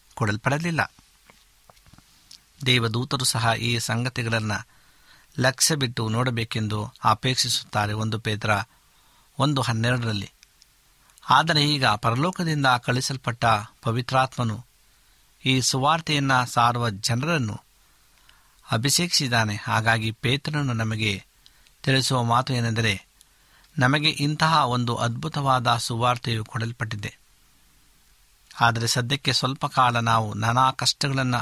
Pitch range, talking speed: 115-135 Hz, 80 wpm